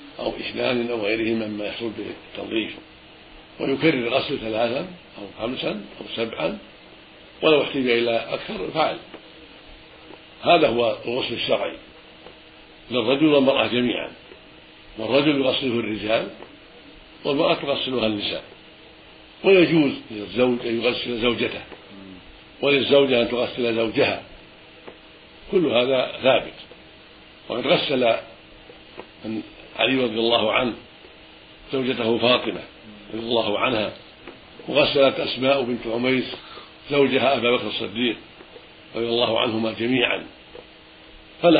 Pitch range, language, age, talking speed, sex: 110-135 Hz, Arabic, 60-79, 100 wpm, male